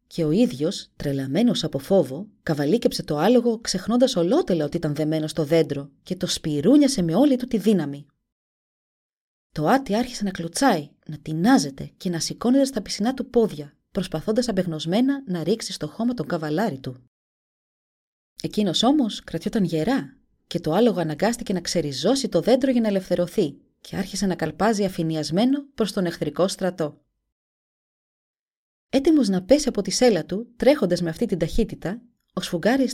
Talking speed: 155 wpm